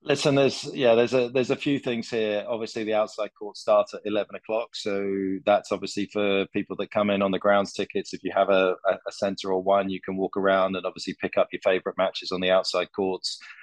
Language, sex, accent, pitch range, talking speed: English, male, British, 95-105 Hz, 235 wpm